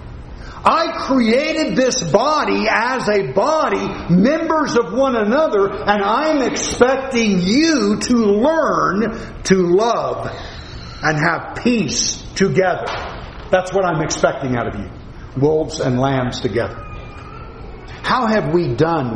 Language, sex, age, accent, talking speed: English, male, 50-69, American, 120 wpm